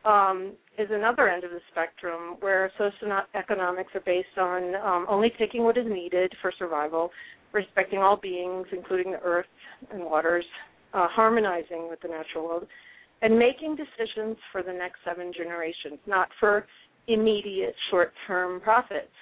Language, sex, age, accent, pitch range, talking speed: English, female, 40-59, American, 180-220 Hz, 145 wpm